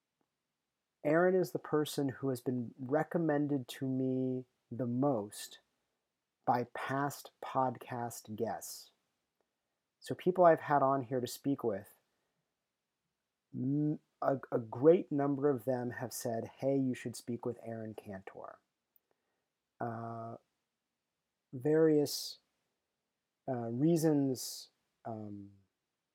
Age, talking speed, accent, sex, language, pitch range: 30-49, 100 wpm, American, male, English, 115-140 Hz